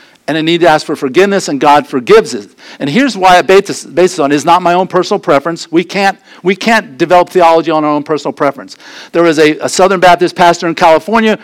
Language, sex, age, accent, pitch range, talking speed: English, male, 50-69, American, 150-185 Hz, 235 wpm